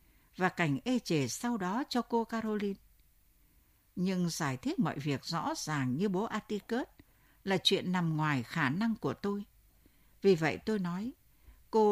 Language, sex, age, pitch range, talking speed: Vietnamese, female, 60-79, 145-235 Hz, 160 wpm